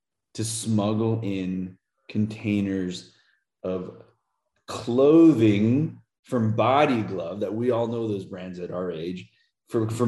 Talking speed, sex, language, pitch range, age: 120 wpm, male, English, 90-115 Hz, 30-49